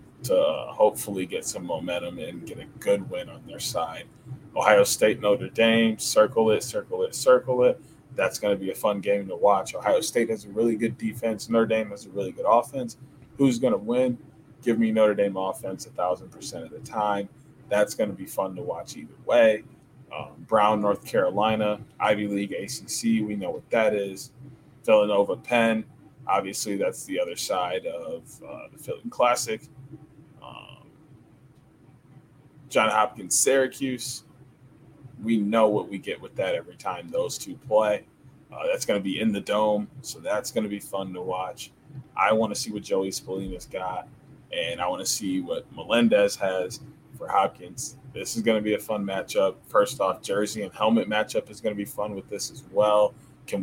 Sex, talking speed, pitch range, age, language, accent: male, 185 wpm, 105-150 Hz, 20-39, English, American